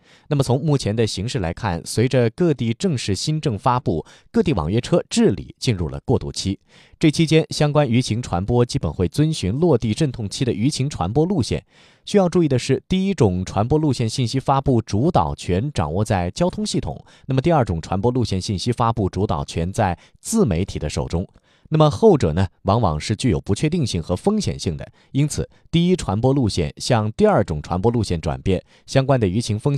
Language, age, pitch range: Chinese, 30-49, 95-150 Hz